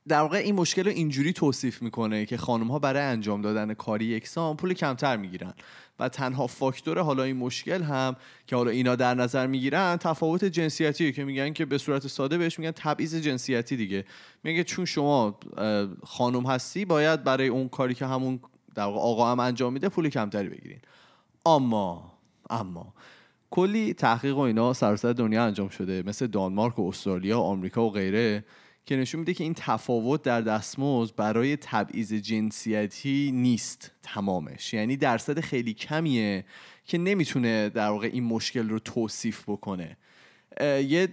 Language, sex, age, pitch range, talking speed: Persian, male, 30-49, 105-140 Hz, 160 wpm